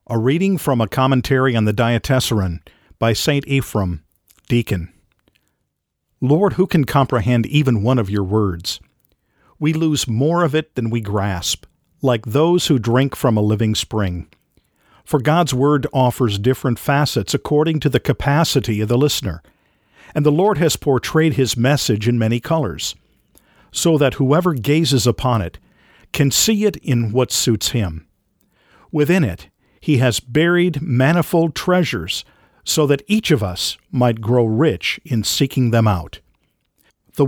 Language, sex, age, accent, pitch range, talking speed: English, male, 50-69, American, 105-145 Hz, 150 wpm